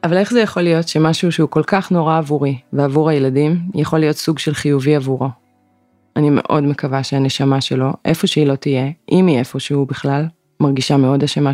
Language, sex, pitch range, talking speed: Hebrew, female, 145-160 Hz, 185 wpm